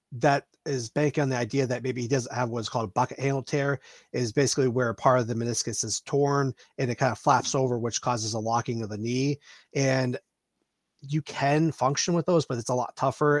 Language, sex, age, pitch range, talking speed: English, male, 30-49, 120-140 Hz, 230 wpm